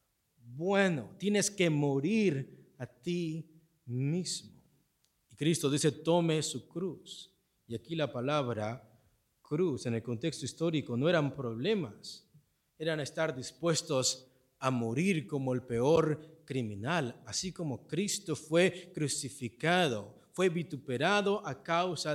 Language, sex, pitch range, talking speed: Spanish, male, 135-190 Hz, 115 wpm